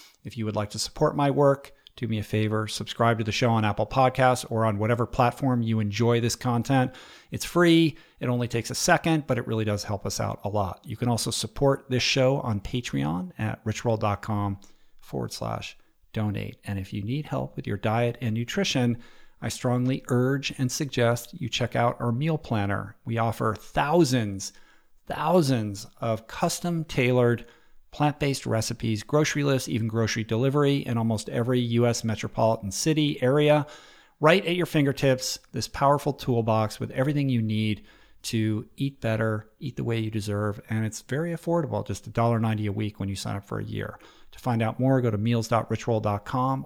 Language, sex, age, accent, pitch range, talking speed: English, male, 50-69, American, 110-130 Hz, 175 wpm